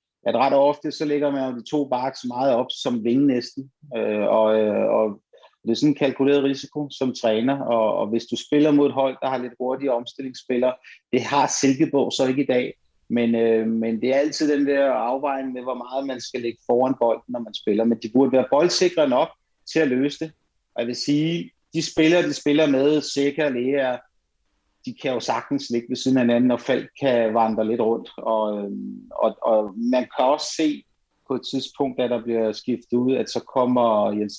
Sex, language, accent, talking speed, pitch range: male, Danish, native, 210 wpm, 115-140 Hz